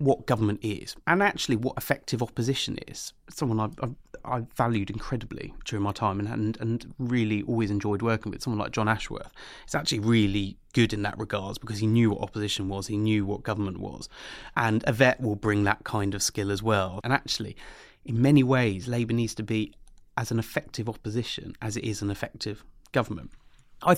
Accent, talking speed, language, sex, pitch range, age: British, 195 wpm, English, male, 105-130 Hz, 30-49